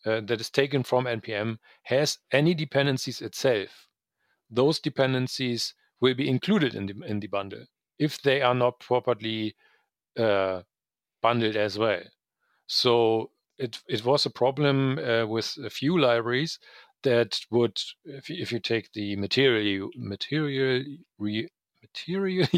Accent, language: German, English